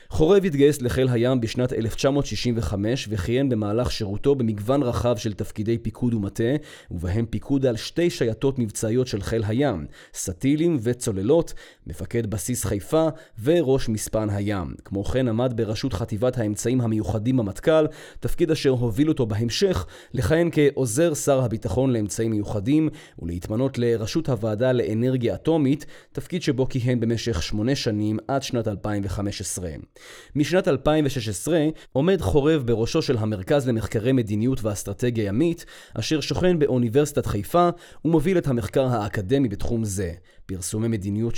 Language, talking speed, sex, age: Hebrew, 130 wpm, male, 30-49